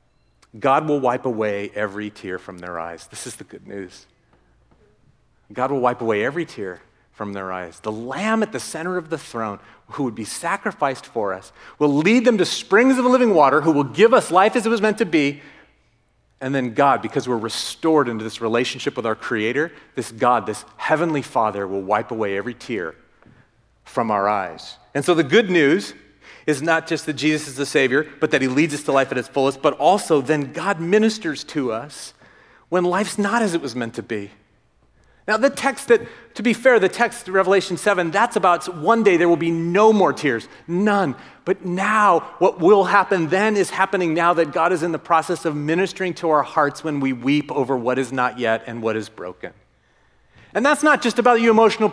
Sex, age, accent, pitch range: male, 40-59, American, 125-190 Hz